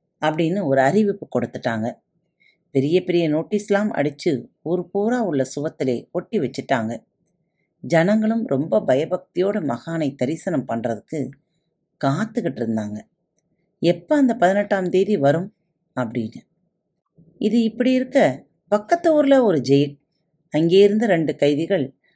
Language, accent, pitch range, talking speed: Tamil, native, 145-205 Hz, 105 wpm